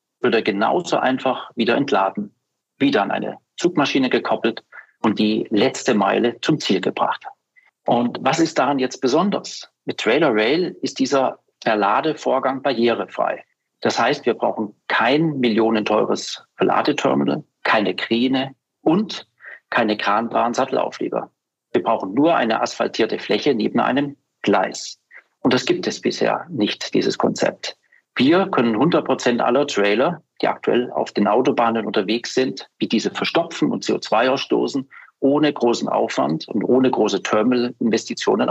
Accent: German